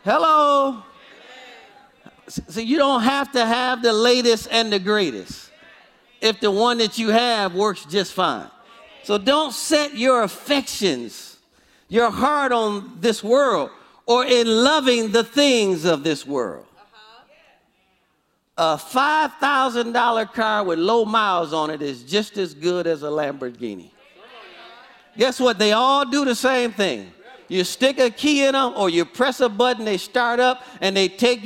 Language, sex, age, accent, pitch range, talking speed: English, male, 50-69, American, 210-265 Hz, 150 wpm